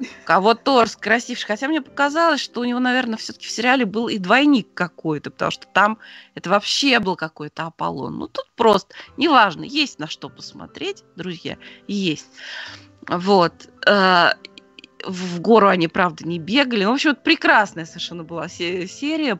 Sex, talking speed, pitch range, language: female, 150 wpm, 170-245 Hz, Russian